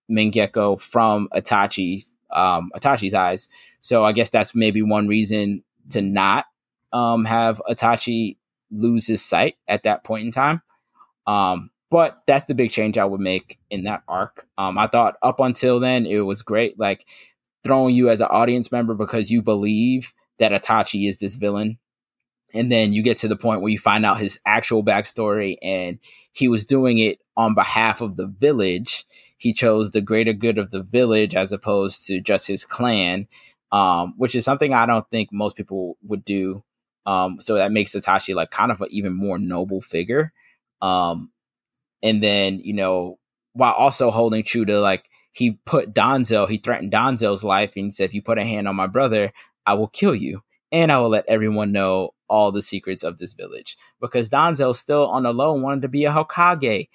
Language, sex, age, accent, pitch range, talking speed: English, male, 20-39, American, 100-120 Hz, 190 wpm